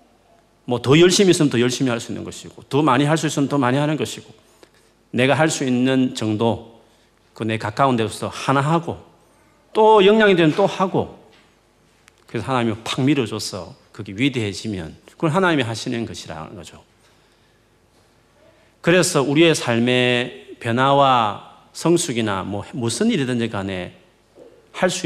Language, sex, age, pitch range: Korean, male, 40-59, 110-155 Hz